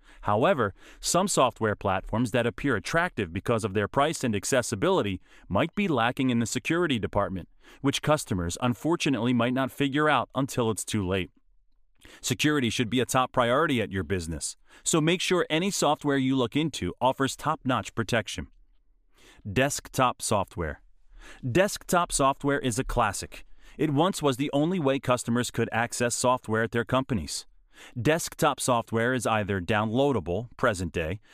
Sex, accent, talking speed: male, American, 145 wpm